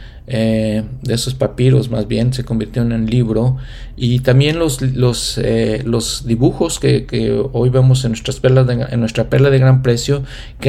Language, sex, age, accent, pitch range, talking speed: Spanish, male, 40-59, Mexican, 115-135 Hz, 185 wpm